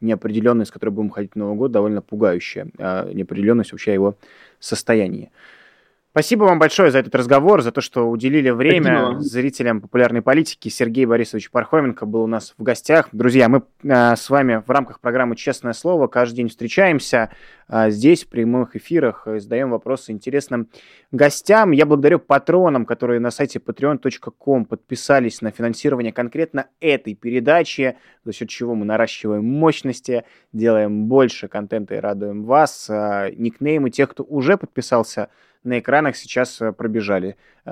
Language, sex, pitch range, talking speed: Russian, male, 110-135 Hz, 145 wpm